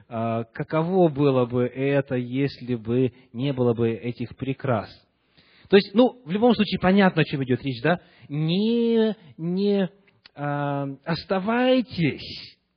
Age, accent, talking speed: 30-49, native, 125 wpm